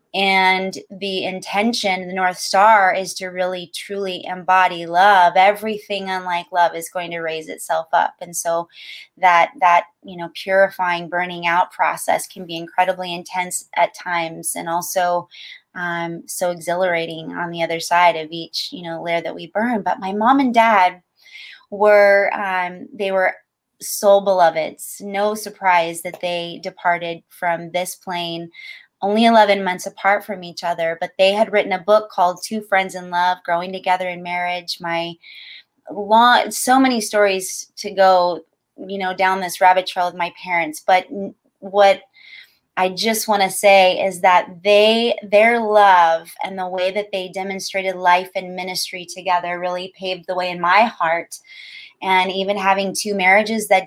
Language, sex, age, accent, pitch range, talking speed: English, female, 20-39, American, 175-200 Hz, 165 wpm